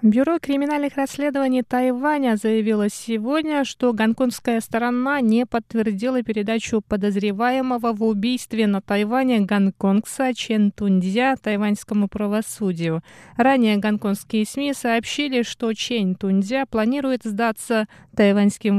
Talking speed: 100 wpm